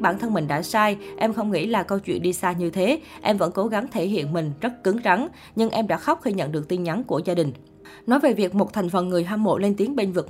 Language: Vietnamese